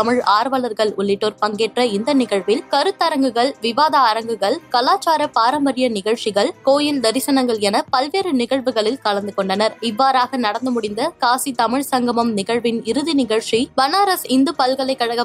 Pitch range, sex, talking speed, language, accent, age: 225-280 Hz, female, 120 wpm, Tamil, native, 20-39